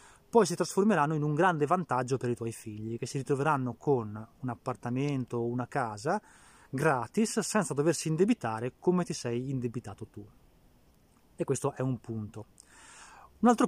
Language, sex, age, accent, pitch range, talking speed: Italian, male, 20-39, native, 120-160 Hz, 160 wpm